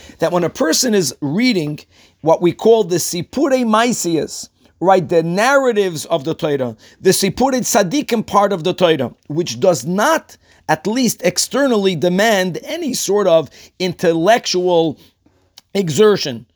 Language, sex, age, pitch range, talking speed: English, male, 40-59, 175-230 Hz, 135 wpm